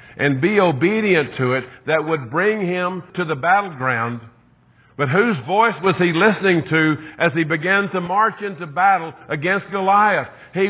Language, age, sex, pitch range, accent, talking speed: English, 50-69, male, 150-190 Hz, American, 165 wpm